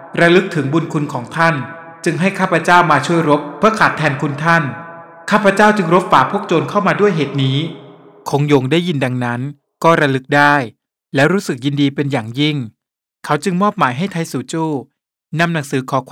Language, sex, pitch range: Thai, male, 140-175 Hz